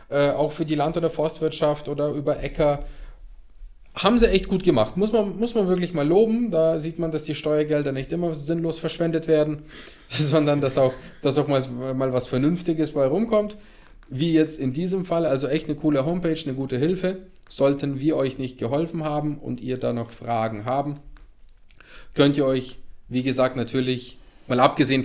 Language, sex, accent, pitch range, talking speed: German, male, German, 125-155 Hz, 185 wpm